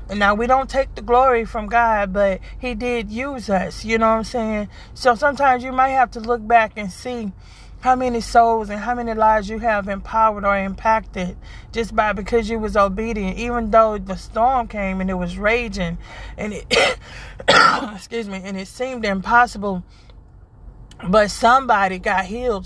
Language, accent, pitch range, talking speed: English, American, 200-235 Hz, 180 wpm